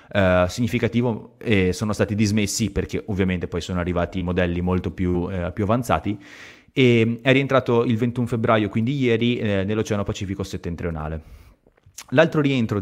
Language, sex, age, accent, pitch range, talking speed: Italian, male, 30-49, native, 90-110 Hz, 150 wpm